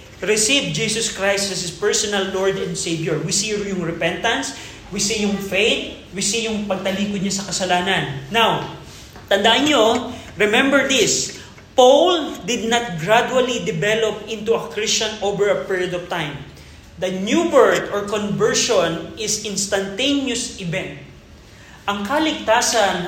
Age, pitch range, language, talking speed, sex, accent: 20-39, 185-220 Hz, Filipino, 135 wpm, male, native